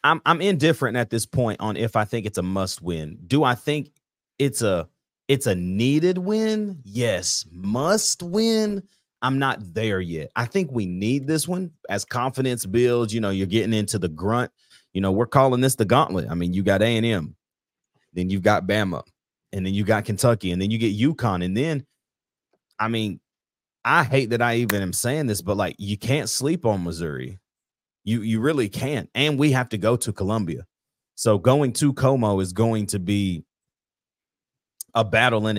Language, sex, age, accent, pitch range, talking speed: English, male, 30-49, American, 100-130 Hz, 190 wpm